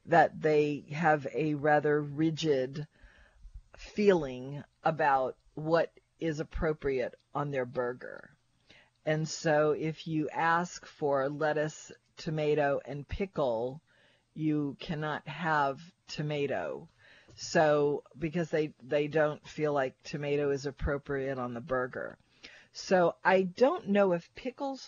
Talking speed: 115 wpm